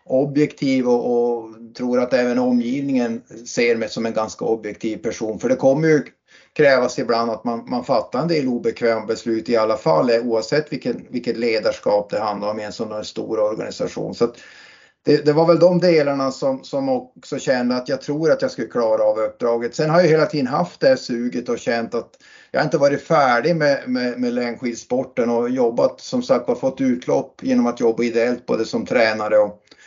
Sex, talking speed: male, 200 wpm